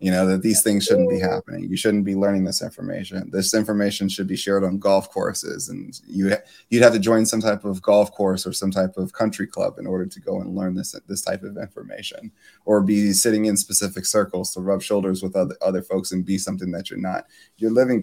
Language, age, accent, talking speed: English, 20-39, American, 245 wpm